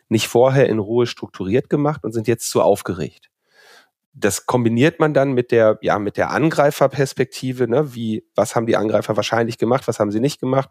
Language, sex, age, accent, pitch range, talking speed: German, male, 40-59, German, 105-140 Hz, 190 wpm